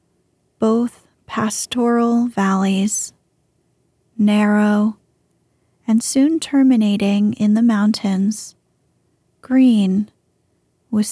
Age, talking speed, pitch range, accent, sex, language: 30-49, 65 wpm, 200-235 Hz, American, female, English